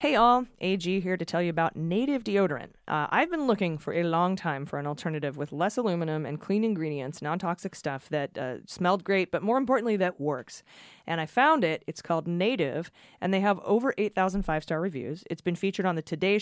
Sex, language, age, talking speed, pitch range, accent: female, English, 30-49, 210 wpm, 160-200 Hz, American